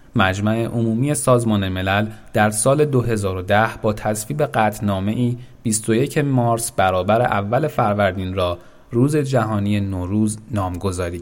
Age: 30-49